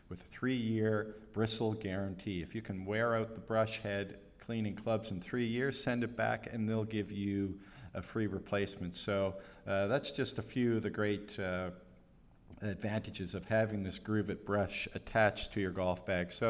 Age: 50-69